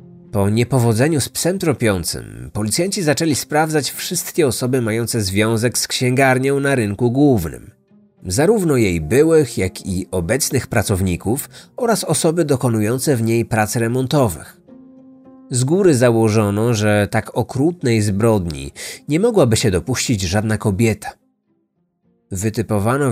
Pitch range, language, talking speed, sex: 110-150 Hz, Polish, 115 wpm, male